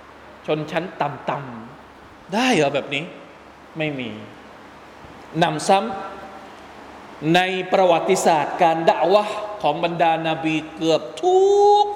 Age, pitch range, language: 20-39, 155-215 Hz, Thai